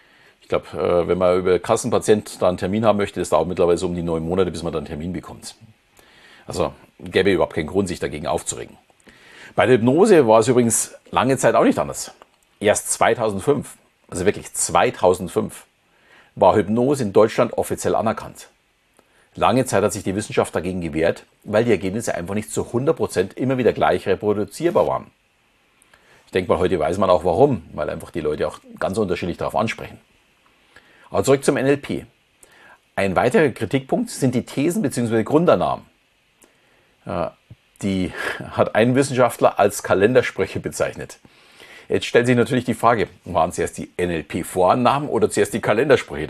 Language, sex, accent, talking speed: German, male, German, 160 wpm